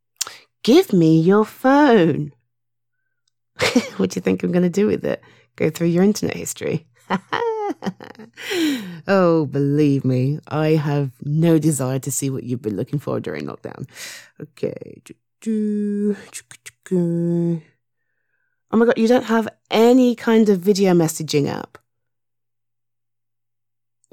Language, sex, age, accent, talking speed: English, female, 30-49, British, 115 wpm